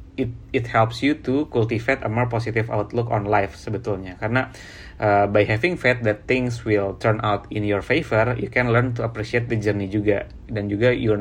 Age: 30-49